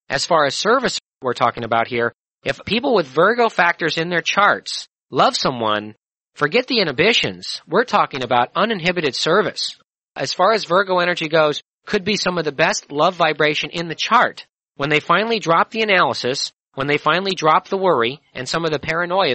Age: 40-59